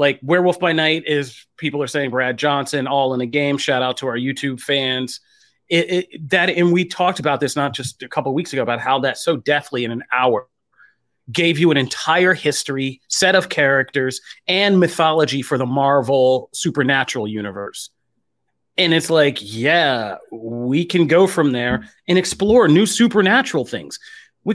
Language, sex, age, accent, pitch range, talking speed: English, male, 30-49, American, 130-170 Hz, 180 wpm